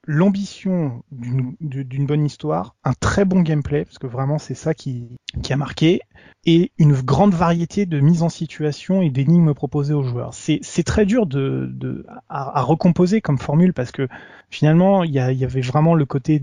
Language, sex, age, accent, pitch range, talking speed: French, male, 20-39, French, 135-170 Hz, 190 wpm